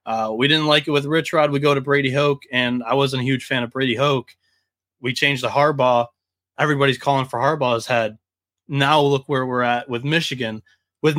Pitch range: 125-155 Hz